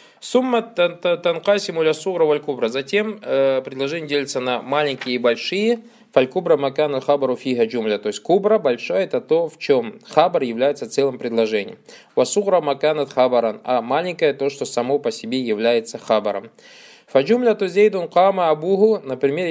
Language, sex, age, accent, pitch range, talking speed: Russian, male, 20-39, native, 140-195 Hz, 140 wpm